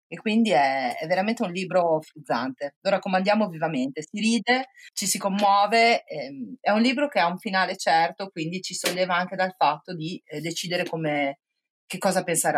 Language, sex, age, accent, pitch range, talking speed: Italian, female, 30-49, native, 155-230 Hz, 180 wpm